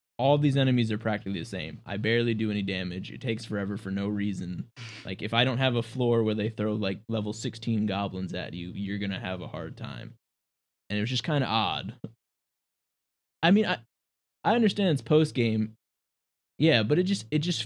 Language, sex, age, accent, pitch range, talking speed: English, male, 20-39, American, 100-120 Hz, 205 wpm